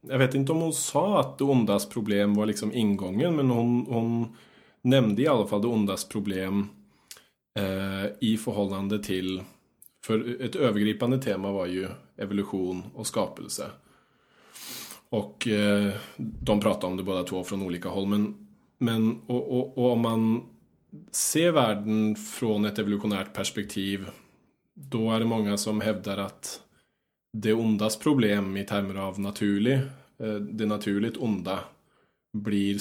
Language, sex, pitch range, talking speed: Swedish, male, 100-125 Hz, 145 wpm